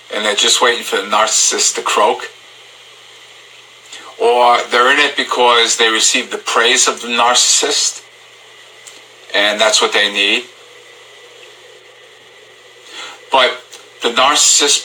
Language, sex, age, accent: English, male, 50-69, American